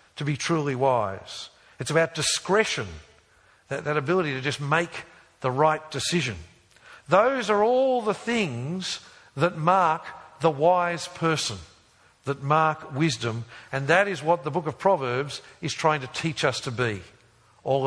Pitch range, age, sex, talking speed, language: 135-190 Hz, 50-69, male, 150 wpm, English